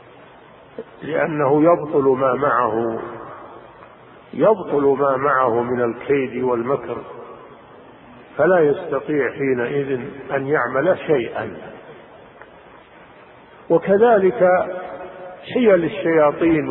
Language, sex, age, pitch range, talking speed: Arabic, male, 50-69, 140-180 Hz, 70 wpm